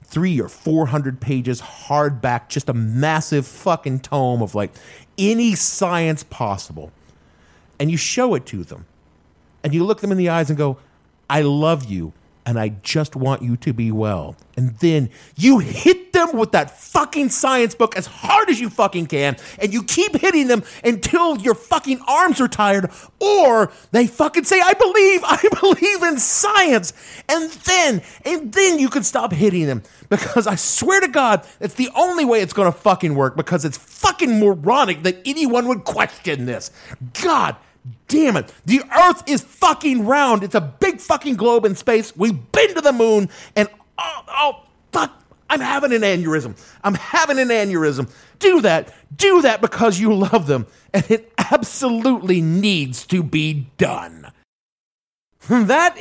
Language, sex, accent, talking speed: English, male, American, 170 wpm